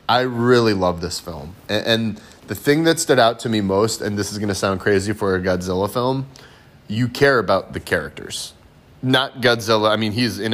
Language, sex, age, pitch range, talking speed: English, male, 30-49, 100-130 Hz, 205 wpm